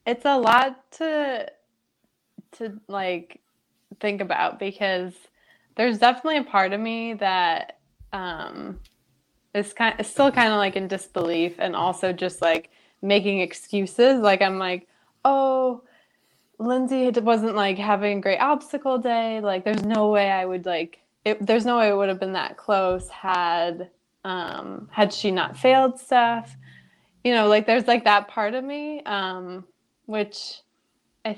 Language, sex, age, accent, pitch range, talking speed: English, female, 20-39, American, 185-235 Hz, 155 wpm